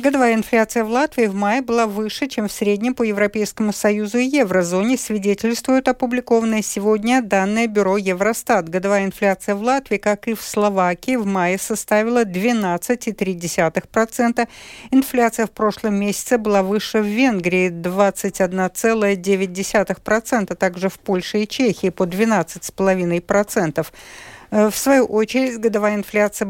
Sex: female